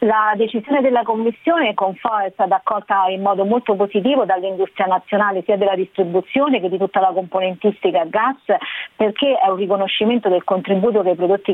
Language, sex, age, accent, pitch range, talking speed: Italian, female, 40-59, native, 185-215 Hz, 175 wpm